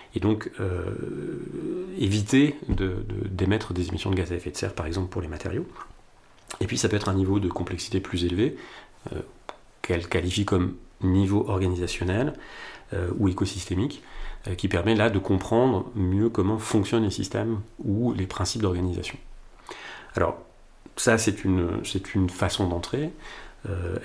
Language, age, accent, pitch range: French, 40-59, French, 90-110 Hz